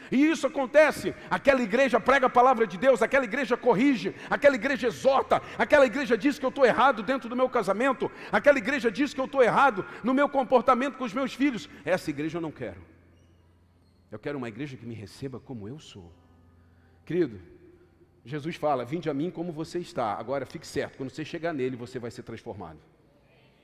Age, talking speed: 50-69, 195 wpm